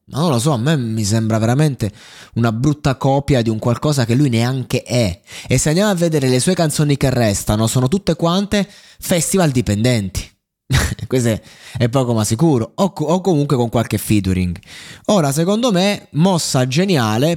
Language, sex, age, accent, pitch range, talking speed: Italian, male, 20-39, native, 110-150 Hz, 175 wpm